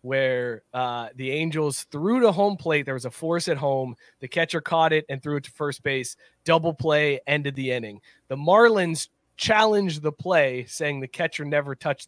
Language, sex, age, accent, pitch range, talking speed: English, male, 20-39, American, 135-225 Hz, 195 wpm